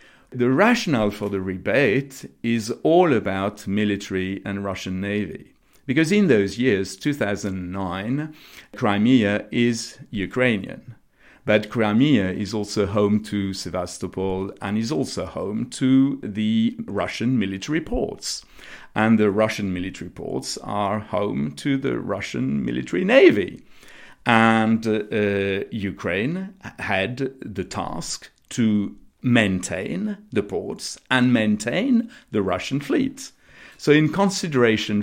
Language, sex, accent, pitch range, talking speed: English, male, French, 100-125 Hz, 115 wpm